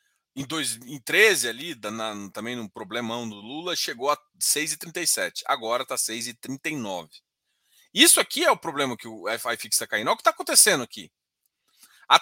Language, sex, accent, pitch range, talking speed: Portuguese, male, Brazilian, 140-235 Hz, 150 wpm